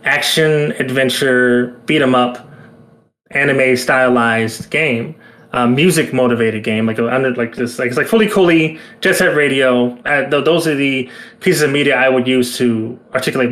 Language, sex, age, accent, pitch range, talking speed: English, male, 20-39, American, 120-145 Hz, 160 wpm